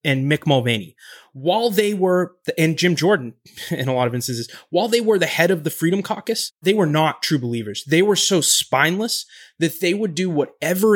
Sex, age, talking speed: male, 20-39, 205 wpm